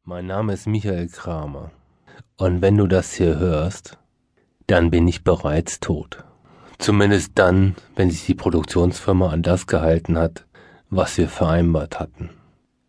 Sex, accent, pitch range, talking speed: male, German, 85-105 Hz, 140 wpm